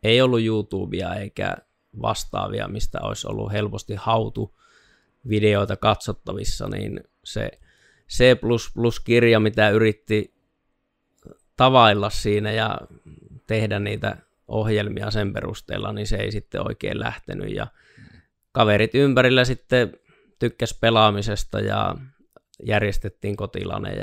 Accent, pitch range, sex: native, 105-115 Hz, male